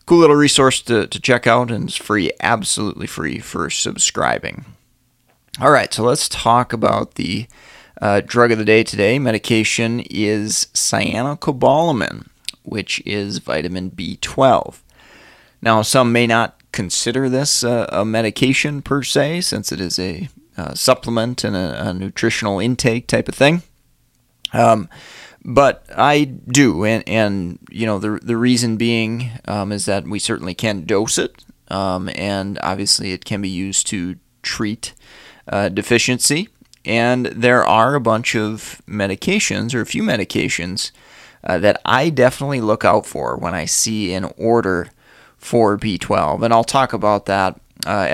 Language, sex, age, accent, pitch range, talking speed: English, male, 30-49, American, 100-125 Hz, 150 wpm